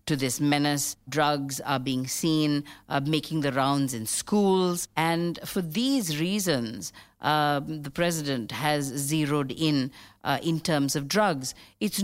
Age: 50-69